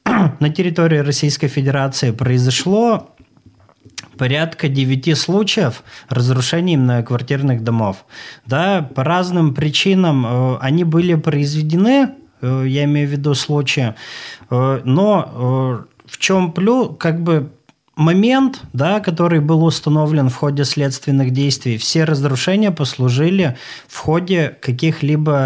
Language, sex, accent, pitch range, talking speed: Russian, male, native, 130-165 Hz, 105 wpm